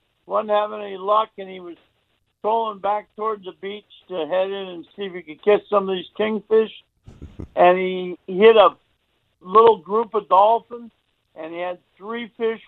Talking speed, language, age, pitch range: 180 wpm, English, 60-79, 185-220 Hz